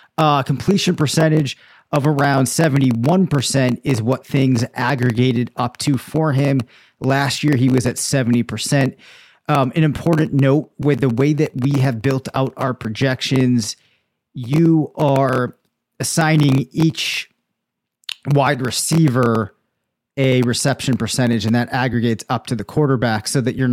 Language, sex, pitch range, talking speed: English, male, 120-145 Hz, 135 wpm